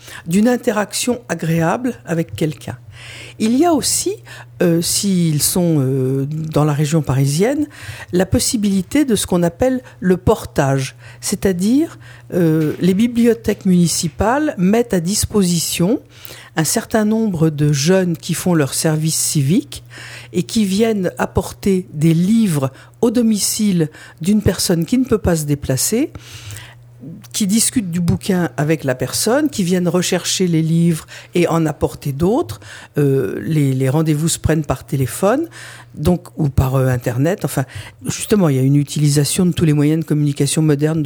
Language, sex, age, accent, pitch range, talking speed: French, female, 50-69, French, 145-205 Hz, 150 wpm